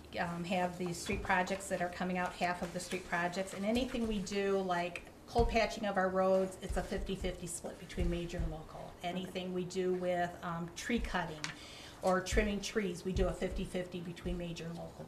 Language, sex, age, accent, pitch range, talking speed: English, female, 40-59, American, 170-190 Hz, 205 wpm